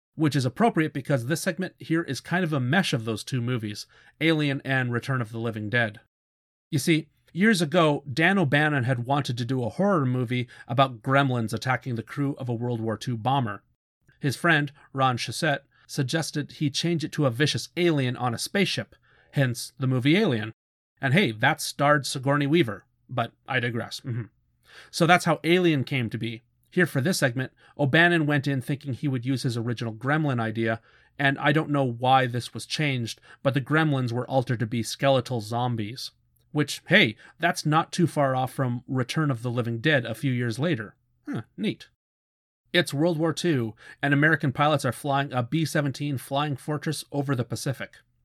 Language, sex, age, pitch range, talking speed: English, male, 40-59, 120-150 Hz, 190 wpm